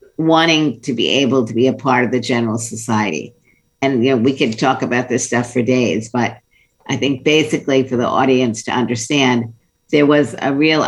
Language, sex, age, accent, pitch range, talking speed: English, female, 50-69, American, 120-140 Hz, 200 wpm